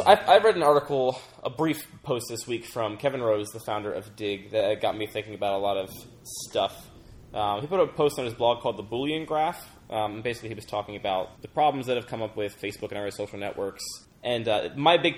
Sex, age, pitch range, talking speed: male, 10-29, 100-125 Hz, 235 wpm